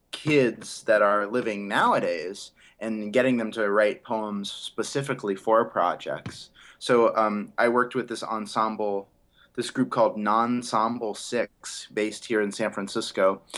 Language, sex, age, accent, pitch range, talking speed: English, male, 20-39, American, 100-120 Hz, 135 wpm